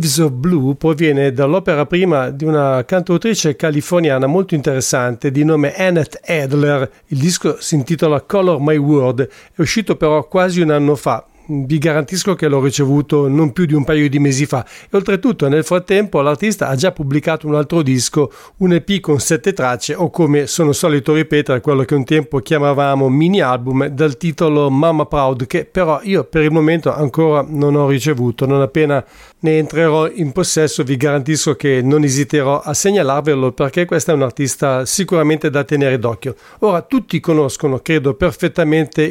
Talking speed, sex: 170 wpm, male